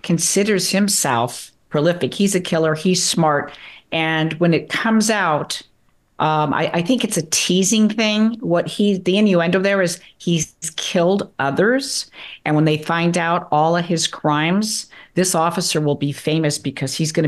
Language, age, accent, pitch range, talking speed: English, 50-69, American, 145-190 Hz, 165 wpm